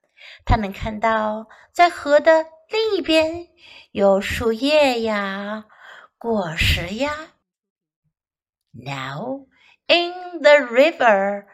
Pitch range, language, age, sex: 220-320 Hz, Chinese, 50-69, female